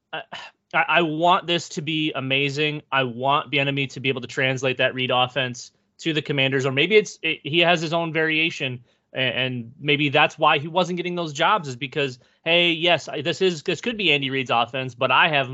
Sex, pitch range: male, 130-170 Hz